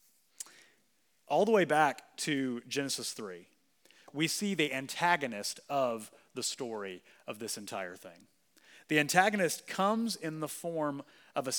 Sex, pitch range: male, 145-200 Hz